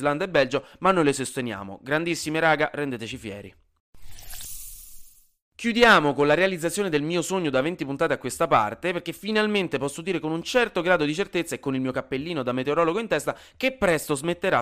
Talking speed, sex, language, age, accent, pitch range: 190 wpm, male, Italian, 20-39, native, 125-175 Hz